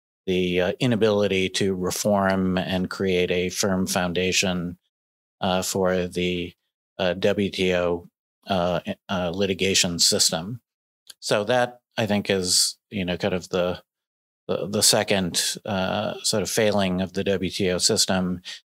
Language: English